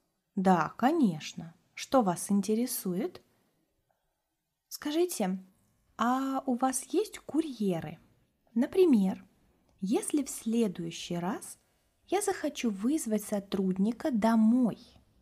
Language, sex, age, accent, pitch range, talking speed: Russian, female, 20-39, native, 180-240 Hz, 85 wpm